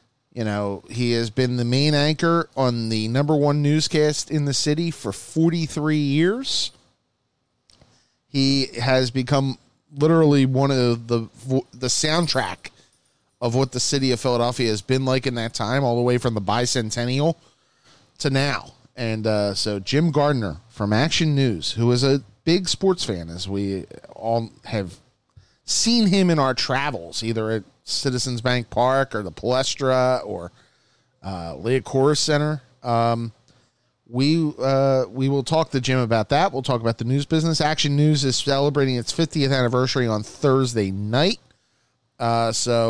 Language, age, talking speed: English, 30-49, 155 wpm